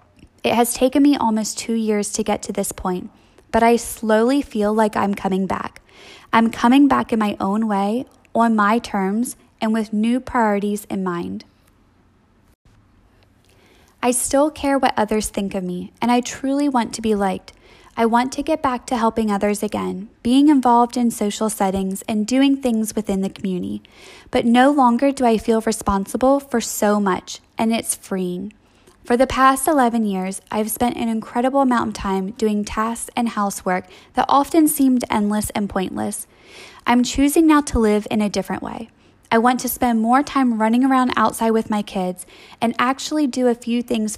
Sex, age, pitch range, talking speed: female, 10-29, 200-245 Hz, 180 wpm